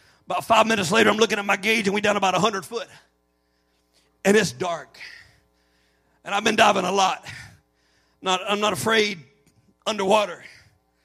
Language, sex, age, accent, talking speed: English, male, 40-59, American, 155 wpm